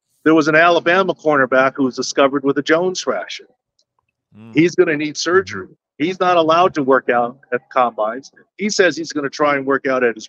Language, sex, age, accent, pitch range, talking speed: English, male, 50-69, American, 130-165 Hz, 210 wpm